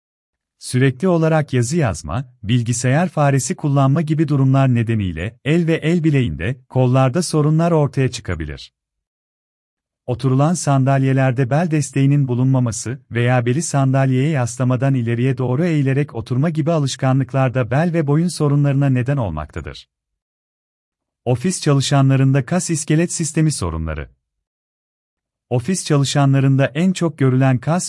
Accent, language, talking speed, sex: native, Turkish, 110 wpm, male